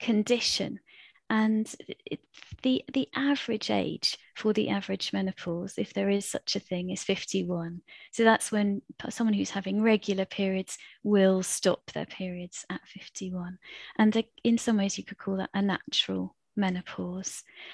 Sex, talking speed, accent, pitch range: female, 145 wpm, British, 185-210 Hz